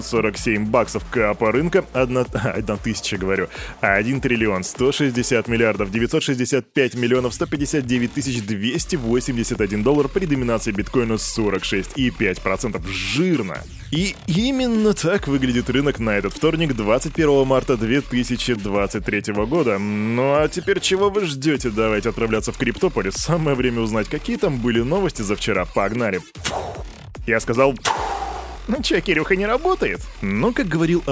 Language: Russian